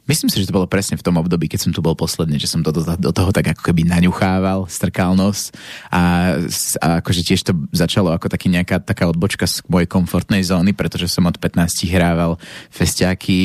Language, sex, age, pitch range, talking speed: Slovak, male, 20-39, 85-95 Hz, 215 wpm